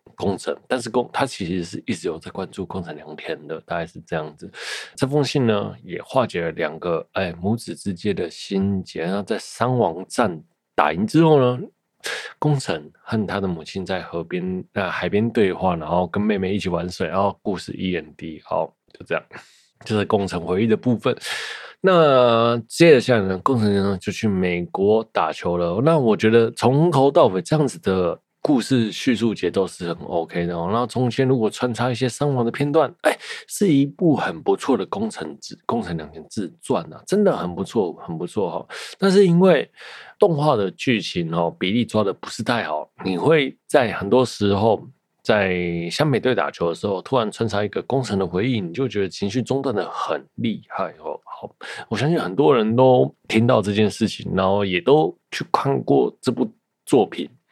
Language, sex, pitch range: Chinese, male, 95-130 Hz